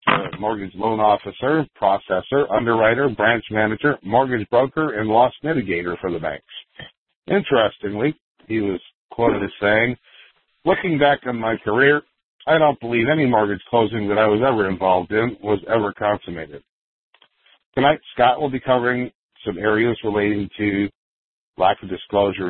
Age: 50-69